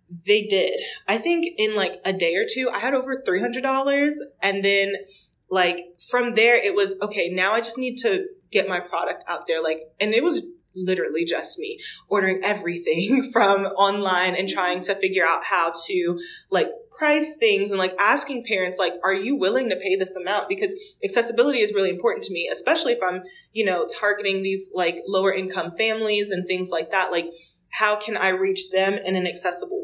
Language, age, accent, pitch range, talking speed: English, 20-39, American, 185-290 Hz, 195 wpm